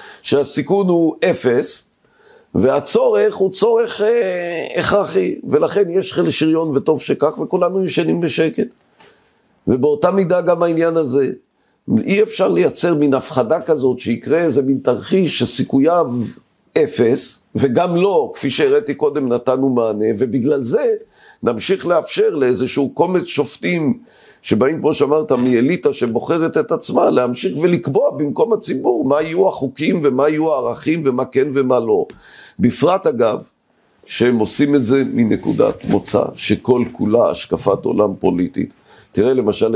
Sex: male